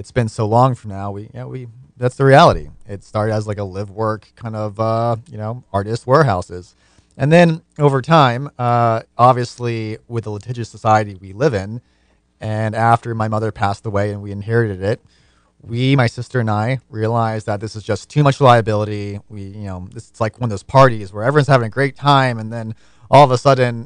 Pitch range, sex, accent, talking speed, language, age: 105-125 Hz, male, American, 215 wpm, English, 30-49